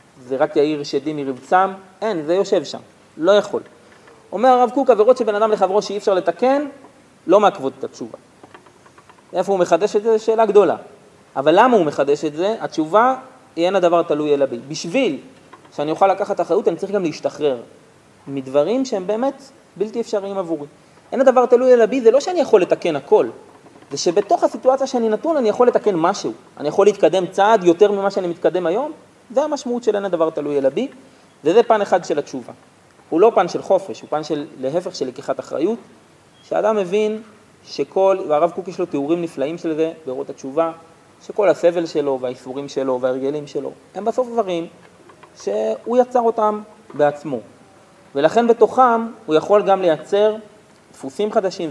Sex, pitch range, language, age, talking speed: male, 155-220 Hz, Hebrew, 30-49, 165 wpm